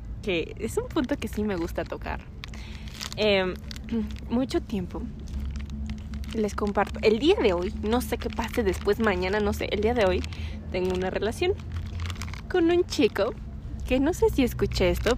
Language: Spanish